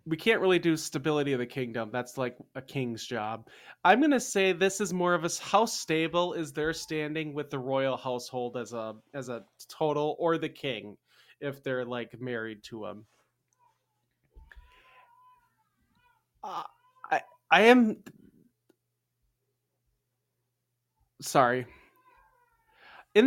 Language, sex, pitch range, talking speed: English, male, 125-175 Hz, 130 wpm